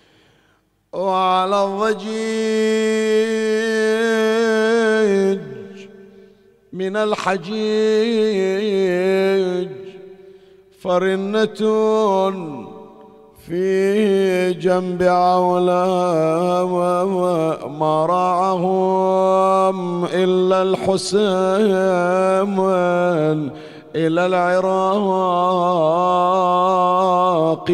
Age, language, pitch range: 50-69, Arabic, 180-195 Hz